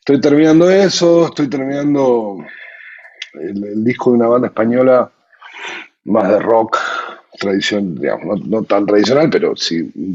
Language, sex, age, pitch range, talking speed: Spanish, male, 50-69, 95-140 Hz, 140 wpm